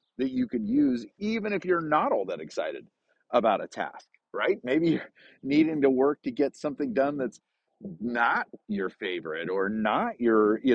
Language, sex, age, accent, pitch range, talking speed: English, male, 40-59, American, 105-140 Hz, 180 wpm